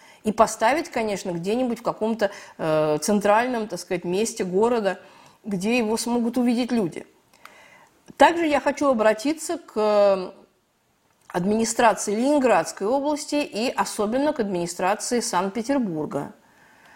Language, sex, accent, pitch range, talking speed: Russian, female, native, 195-255 Hz, 105 wpm